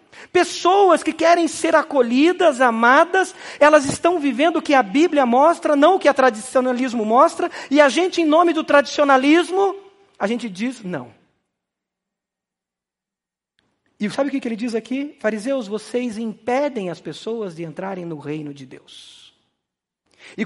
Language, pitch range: Portuguese, 180-290 Hz